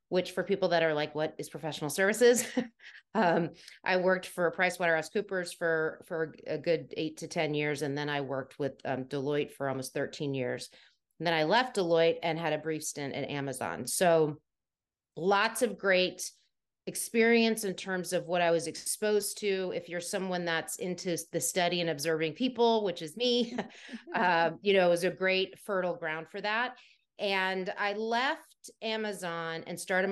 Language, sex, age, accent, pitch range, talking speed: English, female, 30-49, American, 160-195 Hz, 175 wpm